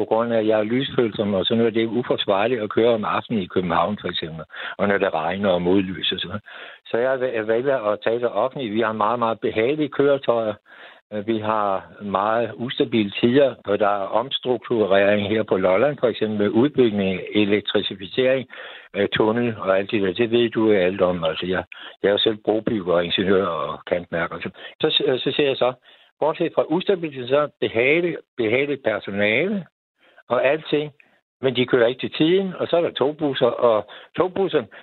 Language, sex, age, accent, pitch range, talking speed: Danish, male, 60-79, native, 110-150 Hz, 185 wpm